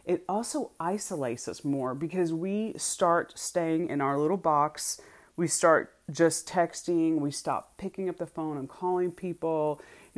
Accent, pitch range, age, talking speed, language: American, 135-180 Hz, 30-49, 160 wpm, English